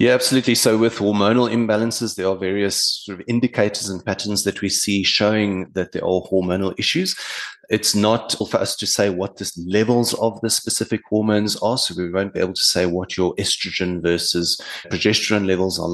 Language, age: English, 30-49